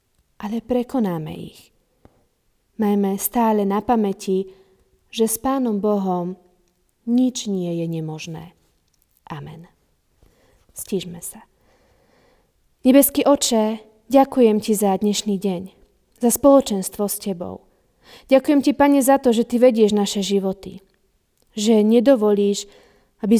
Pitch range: 195-240 Hz